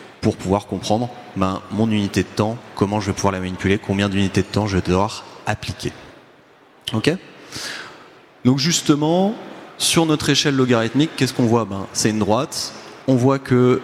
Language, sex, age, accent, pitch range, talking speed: French, male, 30-49, French, 100-130 Hz, 175 wpm